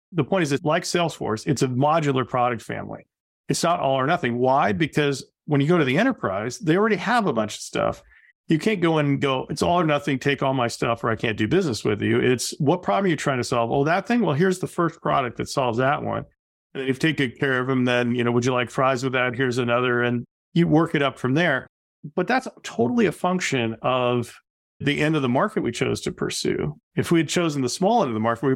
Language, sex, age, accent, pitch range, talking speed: English, male, 40-59, American, 120-150 Hz, 265 wpm